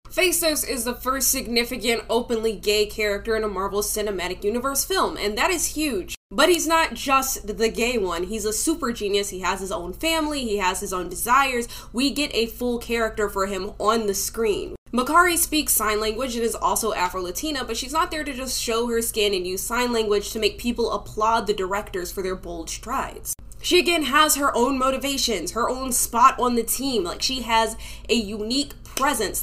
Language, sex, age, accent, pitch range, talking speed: English, female, 10-29, American, 210-270 Hz, 200 wpm